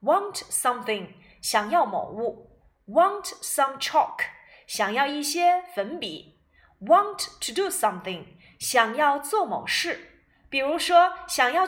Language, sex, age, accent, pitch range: Chinese, female, 30-49, native, 225-355 Hz